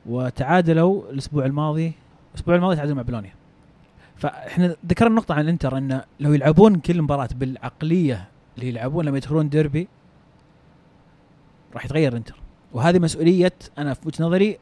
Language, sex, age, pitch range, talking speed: Arabic, male, 30-49, 135-170 Hz, 130 wpm